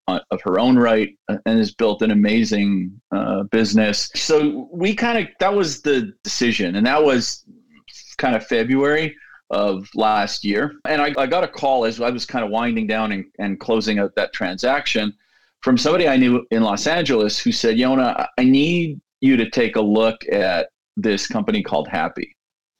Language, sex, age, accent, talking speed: English, male, 40-59, American, 180 wpm